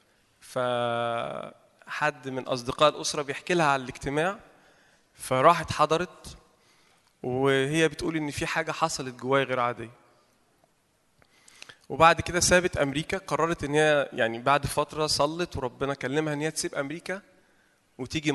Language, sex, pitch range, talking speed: Arabic, male, 135-165 Hz, 120 wpm